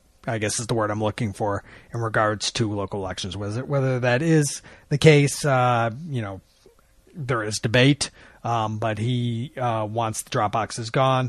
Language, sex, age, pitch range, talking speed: English, male, 30-49, 115-155 Hz, 180 wpm